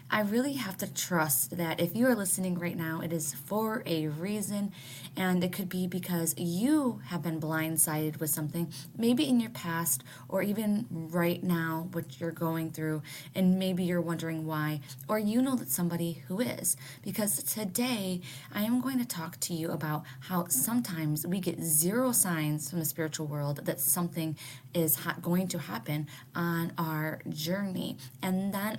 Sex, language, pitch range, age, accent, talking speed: female, English, 155-190 Hz, 20-39, American, 175 wpm